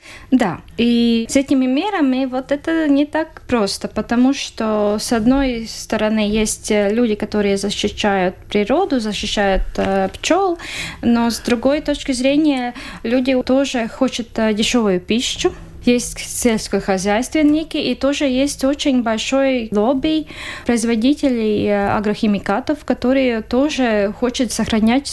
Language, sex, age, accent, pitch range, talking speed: Russian, female, 20-39, native, 215-270 Hz, 110 wpm